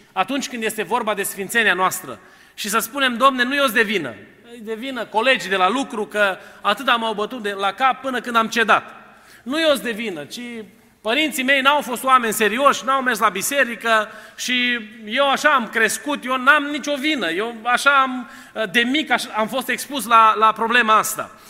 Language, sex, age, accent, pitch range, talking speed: Romanian, male, 30-49, native, 215-270 Hz, 200 wpm